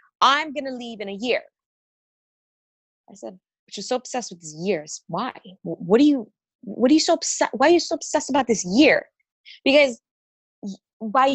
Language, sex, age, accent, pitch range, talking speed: English, female, 20-39, American, 200-270 Hz, 190 wpm